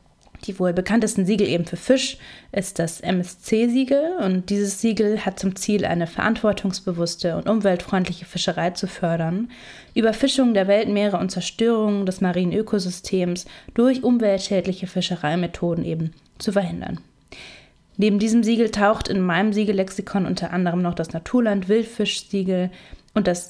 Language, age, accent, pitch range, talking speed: German, 20-39, German, 180-215 Hz, 130 wpm